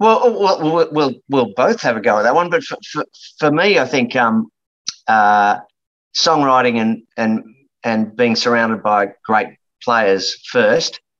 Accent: Australian